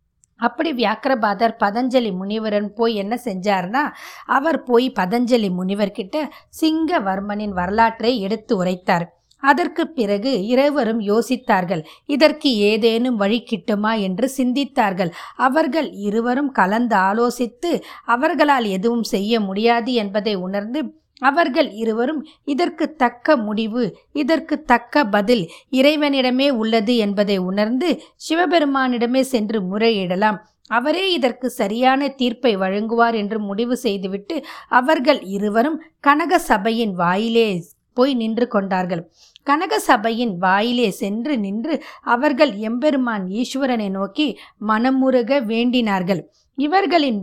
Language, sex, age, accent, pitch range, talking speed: Tamil, female, 20-39, native, 215-275 Hz, 95 wpm